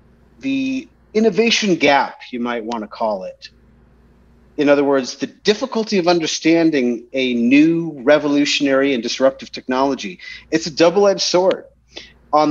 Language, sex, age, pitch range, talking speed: English, male, 40-59, 125-160 Hz, 125 wpm